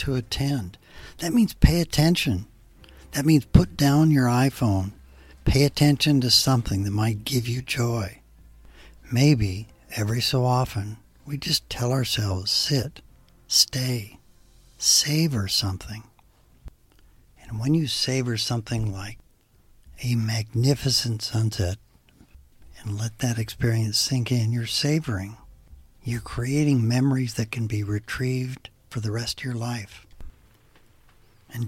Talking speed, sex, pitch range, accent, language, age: 120 wpm, male, 105-130 Hz, American, English, 60-79